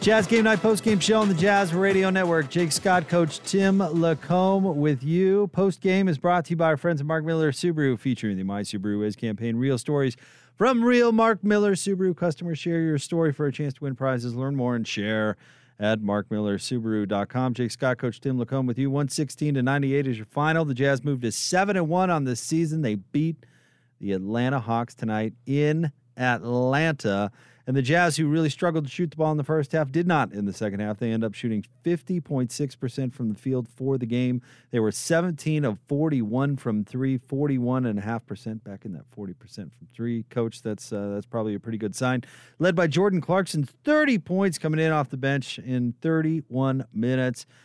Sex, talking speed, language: male, 205 wpm, English